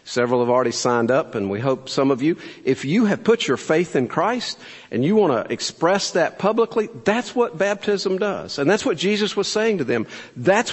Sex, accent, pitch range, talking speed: male, American, 150-215 Hz, 220 wpm